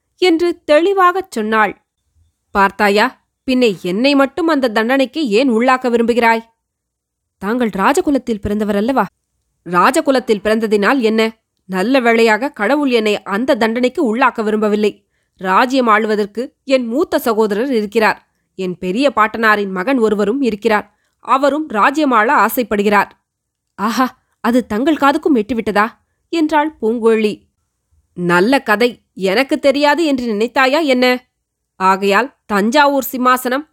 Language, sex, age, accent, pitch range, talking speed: Tamil, female, 20-39, native, 215-270 Hz, 105 wpm